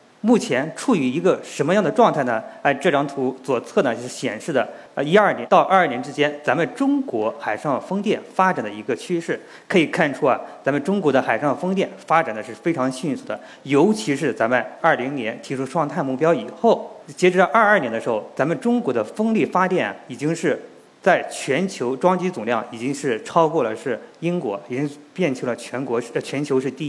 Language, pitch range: Chinese, 140-215 Hz